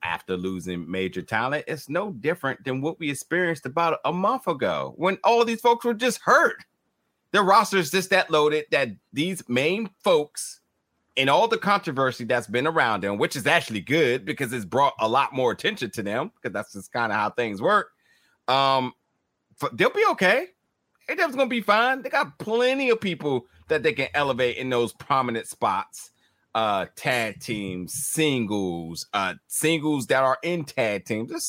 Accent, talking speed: American, 180 wpm